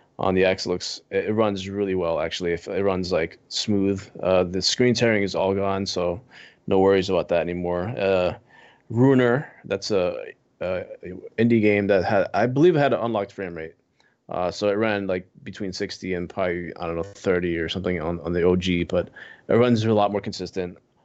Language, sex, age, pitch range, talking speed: English, male, 20-39, 90-105 Hz, 200 wpm